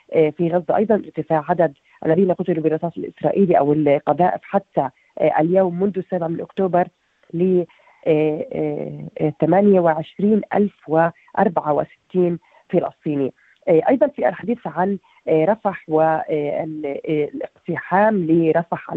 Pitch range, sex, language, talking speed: 155-190 Hz, female, Arabic, 85 wpm